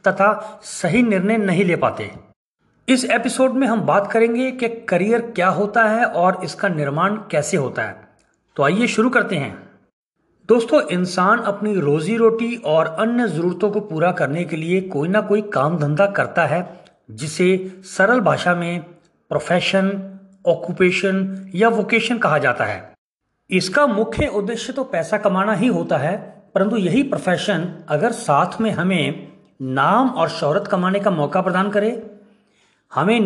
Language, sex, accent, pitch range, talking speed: Hindi, male, native, 175-225 Hz, 150 wpm